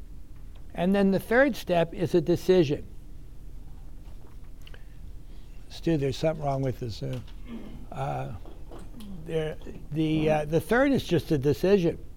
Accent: American